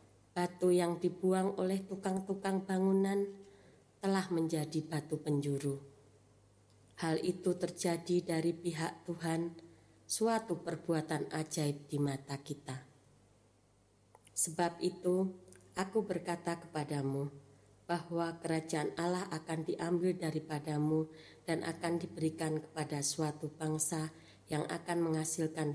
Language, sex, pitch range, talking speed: Indonesian, female, 140-185 Hz, 100 wpm